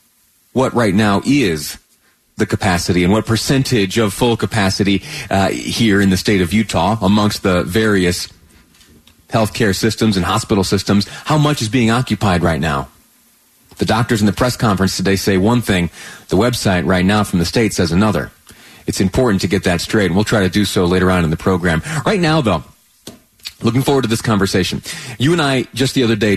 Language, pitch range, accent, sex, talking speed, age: English, 100-125 Hz, American, male, 195 wpm, 30-49